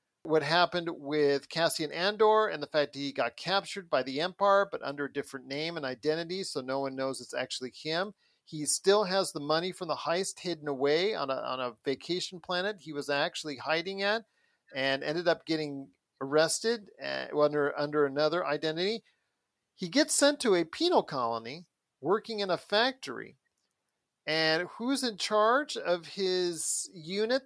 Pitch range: 145-200 Hz